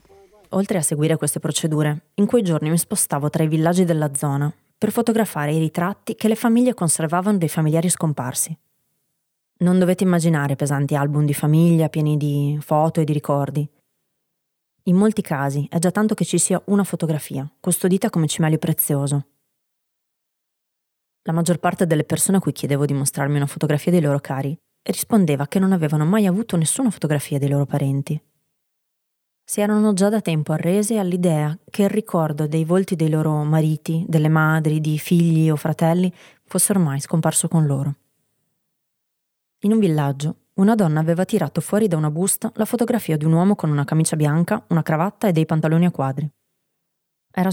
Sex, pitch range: female, 150-185 Hz